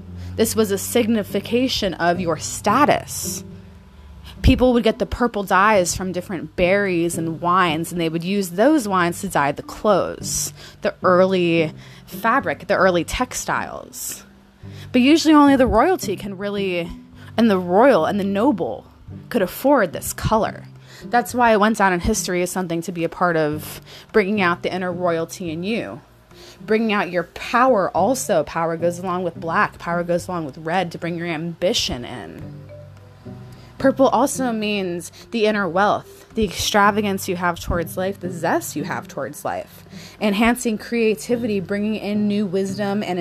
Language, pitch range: English, 170-215 Hz